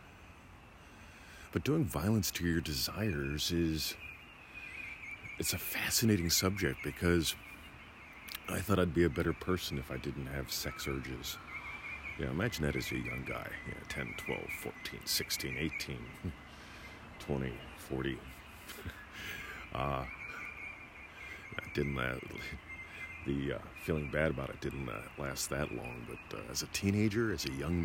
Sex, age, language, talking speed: male, 40-59, English, 130 wpm